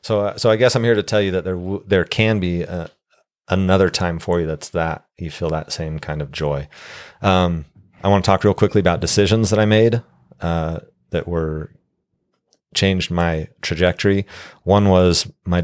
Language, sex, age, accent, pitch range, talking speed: English, male, 30-49, American, 80-95 Hz, 190 wpm